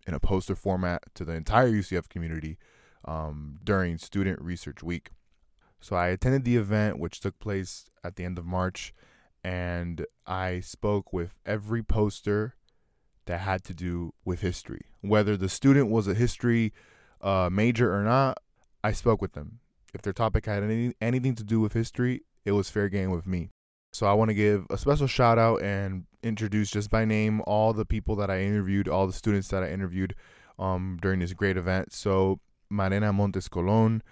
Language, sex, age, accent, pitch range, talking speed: English, male, 20-39, American, 95-110 Hz, 180 wpm